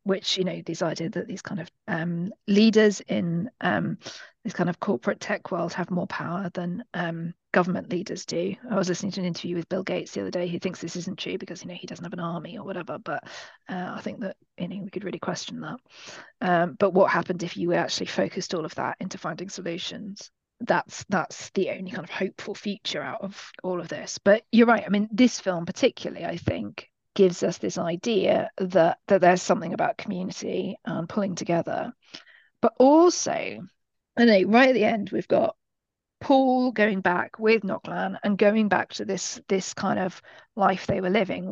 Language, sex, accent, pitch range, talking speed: English, female, British, 180-215 Hz, 210 wpm